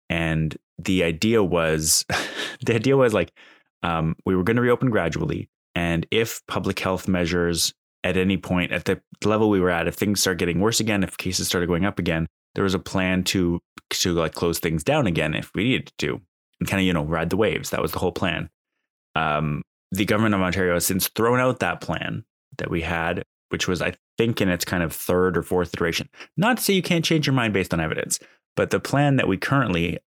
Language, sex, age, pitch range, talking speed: English, male, 20-39, 85-105 Hz, 220 wpm